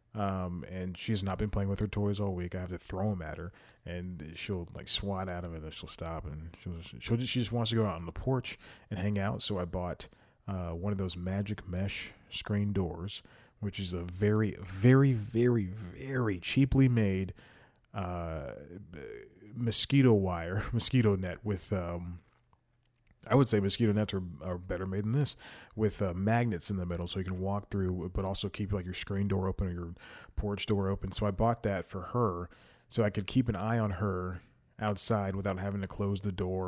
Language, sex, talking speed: English, male, 210 wpm